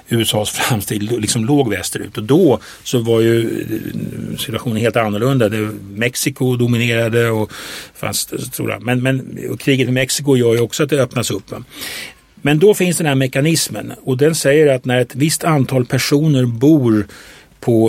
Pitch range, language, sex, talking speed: 110-140 Hz, English, male, 160 wpm